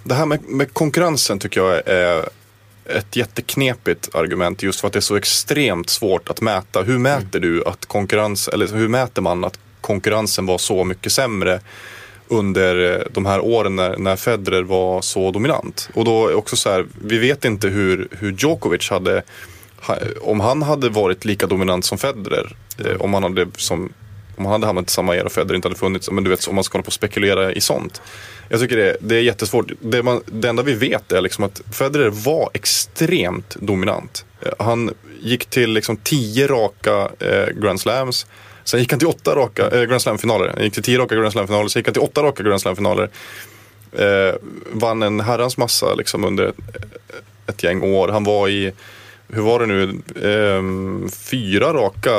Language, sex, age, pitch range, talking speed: Swedish, male, 20-39, 100-120 Hz, 190 wpm